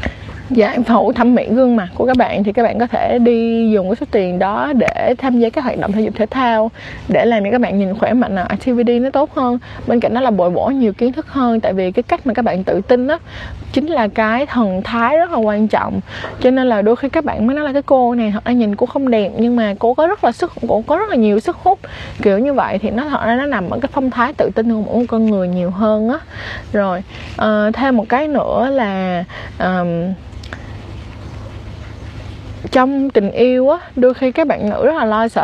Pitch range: 195-255 Hz